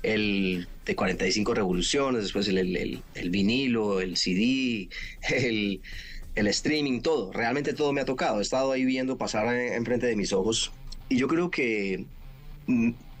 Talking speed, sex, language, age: 165 wpm, male, Spanish, 30-49